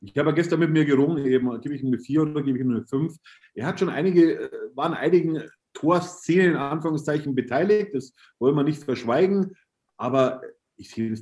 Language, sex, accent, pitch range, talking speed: German, male, German, 120-150 Hz, 200 wpm